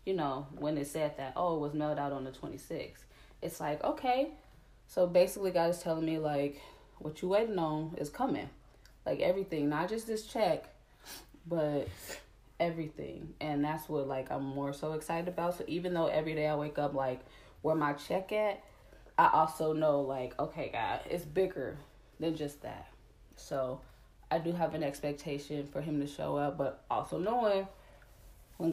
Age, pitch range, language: 10-29, 145-180 Hz, English